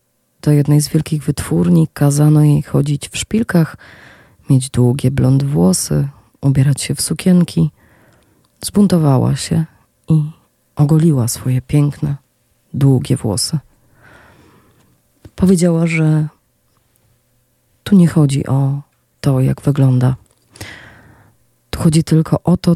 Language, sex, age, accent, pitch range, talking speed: Polish, female, 20-39, native, 130-160 Hz, 105 wpm